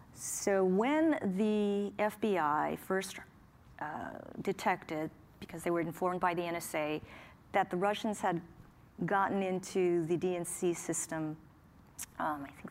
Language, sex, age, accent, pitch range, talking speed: English, female, 40-59, American, 170-200 Hz, 125 wpm